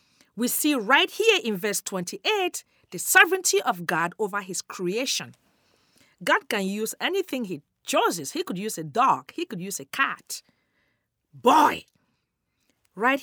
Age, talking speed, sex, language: 40-59, 145 wpm, female, English